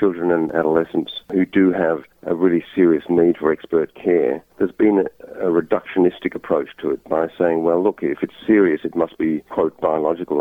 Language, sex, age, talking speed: English, male, 50-69, 185 wpm